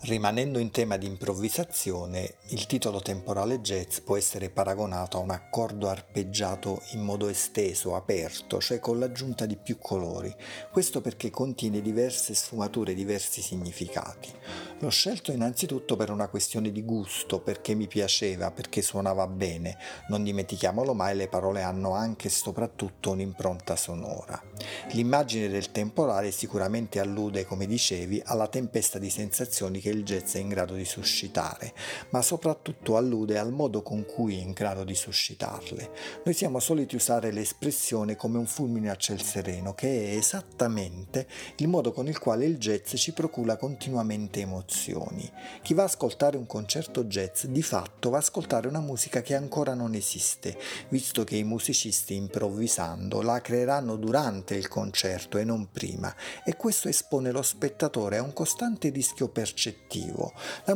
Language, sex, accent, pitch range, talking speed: Italian, male, native, 100-130 Hz, 155 wpm